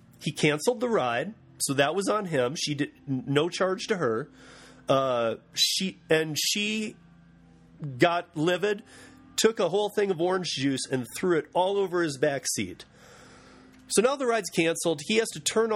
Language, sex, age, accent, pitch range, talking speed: English, male, 30-49, American, 140-190 Hz, 170 wpm